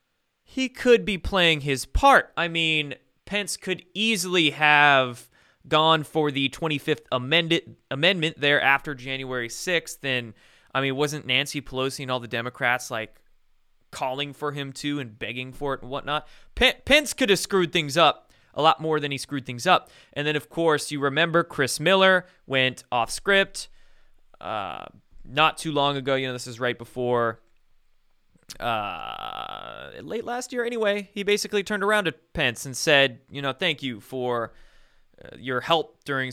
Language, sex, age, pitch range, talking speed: English, male, 20-39, 130-170 Hz, 170 wpm